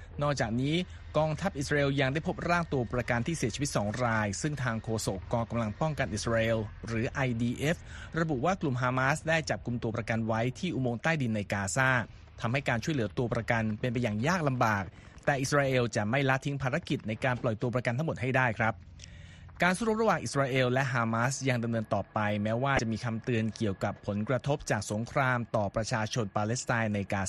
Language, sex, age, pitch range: Thai, male, 30-49, 110-135 Hz